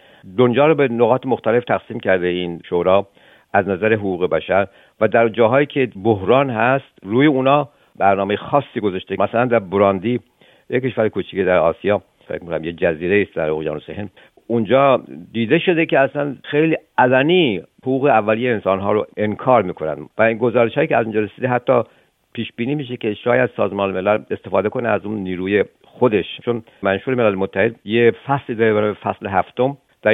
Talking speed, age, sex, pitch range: 165 wpm, 50-69, male, 100-125 Hz